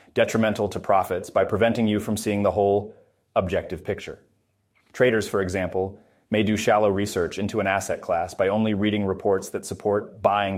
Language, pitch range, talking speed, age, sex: English, 100-115 Hz, 170 wpm, 30-49, male